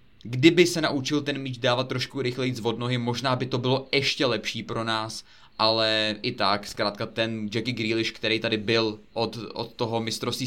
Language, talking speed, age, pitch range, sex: Czech, 185 wpm, 20-39, 110-130 Hz, male